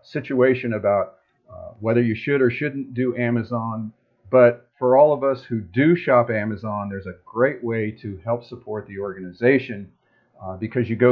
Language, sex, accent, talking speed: English, male, American, 175 wpm